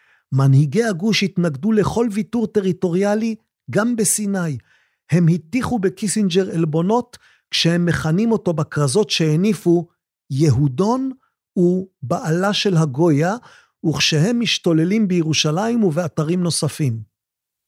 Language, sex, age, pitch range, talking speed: Hebrew, male, 50-69, 145-195 Hz, 90 wpm